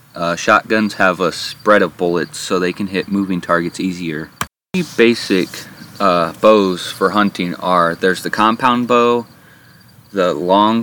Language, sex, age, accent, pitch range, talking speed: English, male, 30-49, American, 90-110 Hz, 150 wpm